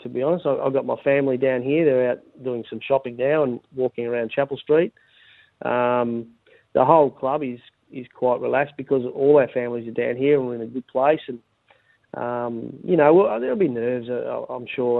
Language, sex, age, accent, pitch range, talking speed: English, male, 30-49, Australian, 120-140 Hz, 205 wpm